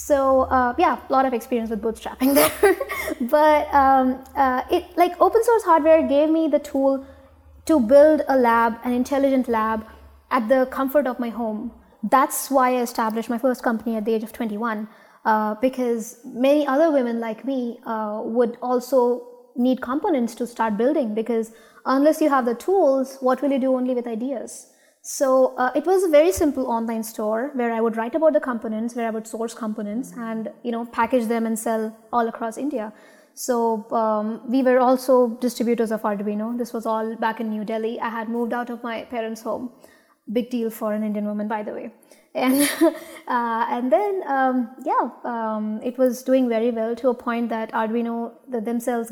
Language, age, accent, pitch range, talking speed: English, 20-39, Indian, 225-270 Hz, 190 wpm